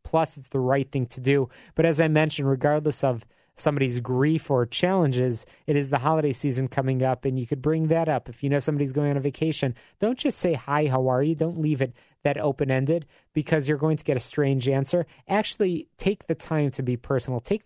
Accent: American